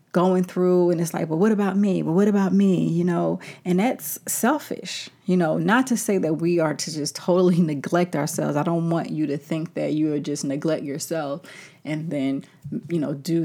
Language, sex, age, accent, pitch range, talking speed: English, female, 30-49, American, 150-180 Hz, 215 wpm